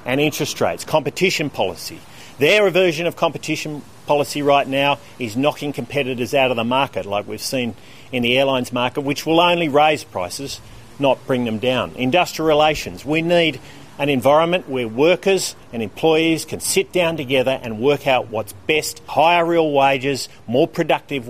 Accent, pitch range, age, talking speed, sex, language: Australian, 135-180 Hz, 40-59, 165 wpm, male, English